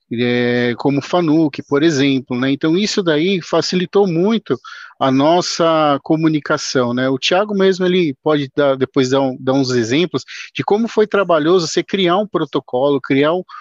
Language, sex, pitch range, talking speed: Portuguese, male, 140-180 Hz, 165 wpm